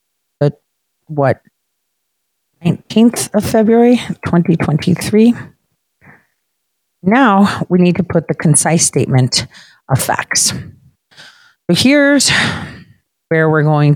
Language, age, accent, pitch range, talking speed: English, 40-59, American, 145-200 Hz, 85 wpm